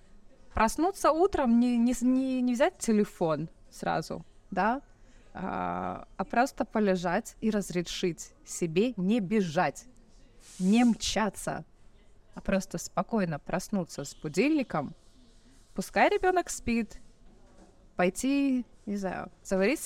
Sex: female